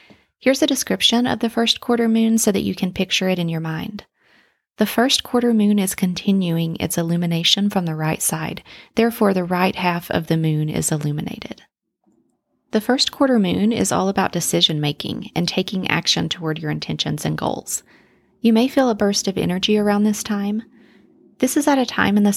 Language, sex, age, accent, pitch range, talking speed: English, female, 30-49, American, 165-210 Hz, 195 wpm